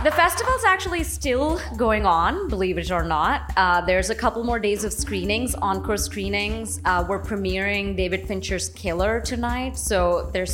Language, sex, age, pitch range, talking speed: English, female, 20-39, 195-250 Hz, 165 wpm